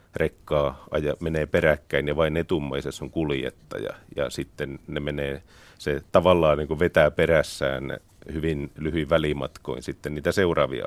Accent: native